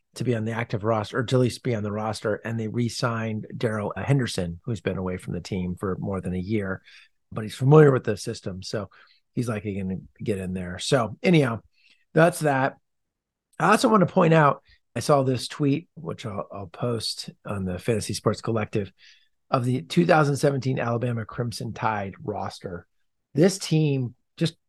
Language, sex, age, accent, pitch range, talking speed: English, male, 40-59, American, 110-140 Hz, 185 wpm